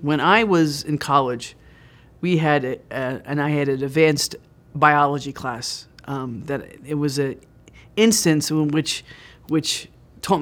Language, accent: English, American